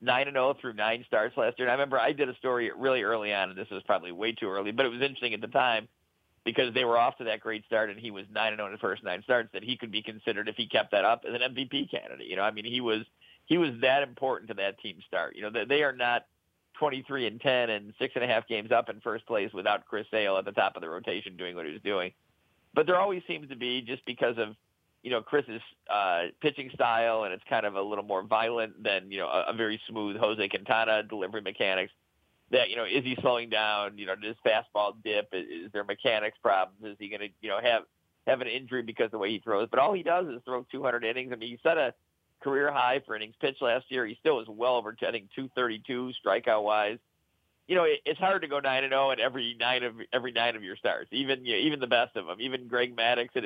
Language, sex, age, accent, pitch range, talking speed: English, male, 50-69, American, 105-130 Hz, 270 wpm